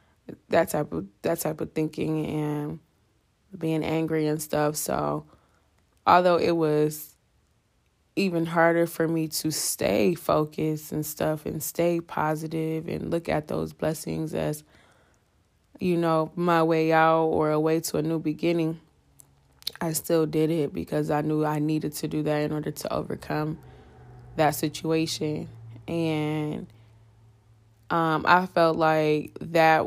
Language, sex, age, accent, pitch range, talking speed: English, female, 20-39, American, 150-165 Hz, 140 wpm